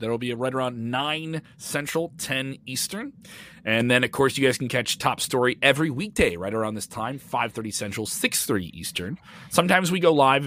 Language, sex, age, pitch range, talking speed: English, male, 30-49, 110-155 Hz, 185 wpm